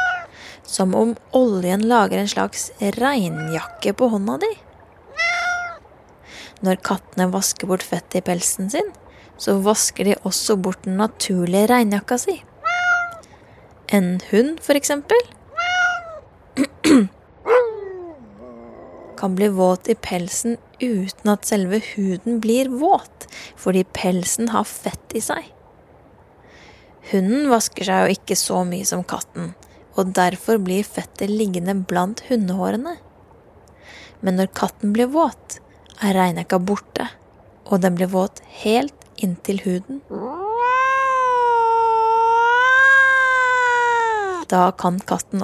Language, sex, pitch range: English, female, 185-295 Hz